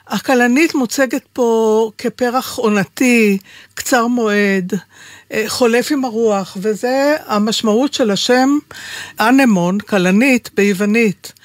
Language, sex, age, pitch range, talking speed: Hebrew, female, 60-79, 210-260 Hz, 90 wpm